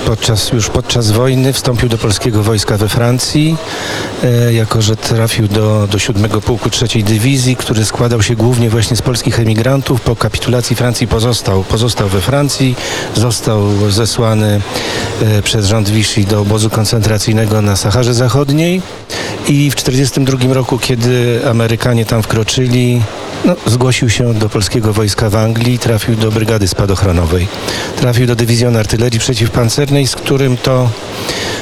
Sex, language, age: male, Polish, 40-59